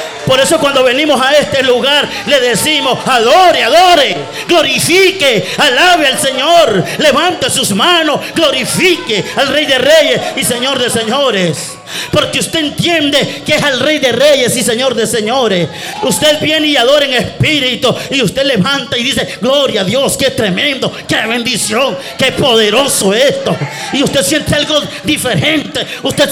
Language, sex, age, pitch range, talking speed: Spanish, male, 50-69, 230-290 Hz, 155 wpm